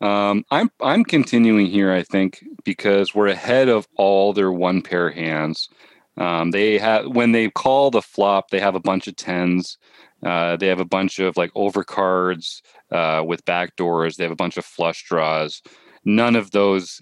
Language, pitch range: English, 90-105 Hz